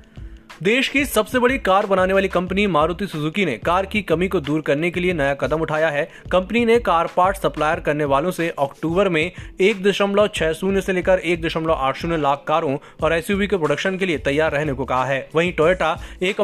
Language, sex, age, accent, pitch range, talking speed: Hindi, male, 20-39, native, 150-195 Hz, 200 wpm